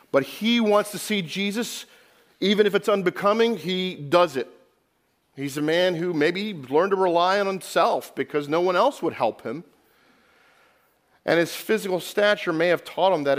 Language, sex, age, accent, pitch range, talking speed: English, male, 40-59, American, 130-190 Hz, 175 wpm